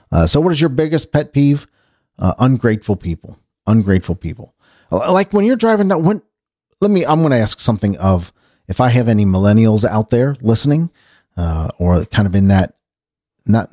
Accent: American